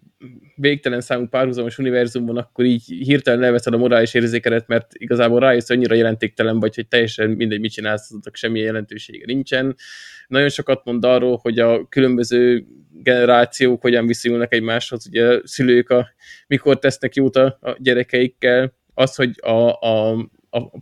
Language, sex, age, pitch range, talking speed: Hungarian, male, 20-39, 115-135 Hz, 150 wpm